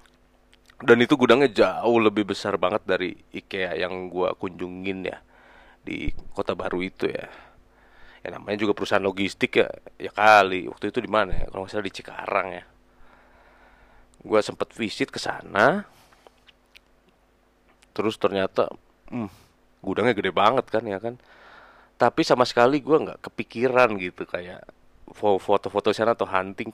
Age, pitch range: 30-49, 95-125 Hz